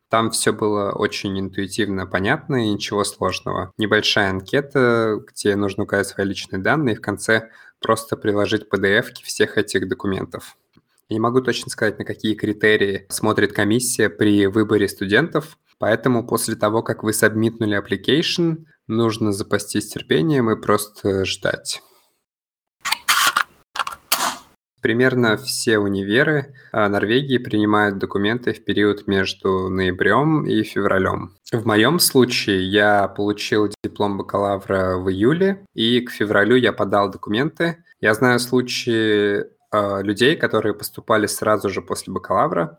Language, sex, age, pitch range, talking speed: Russian, male, 20-39, 100-115 Hz, 125 wpm